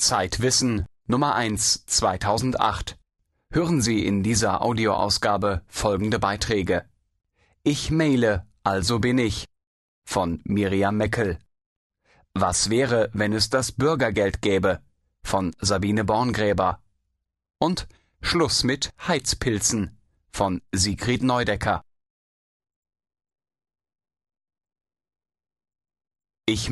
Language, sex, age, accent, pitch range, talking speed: German, male, 30-49, German, 95-125 Hz, 85 wpm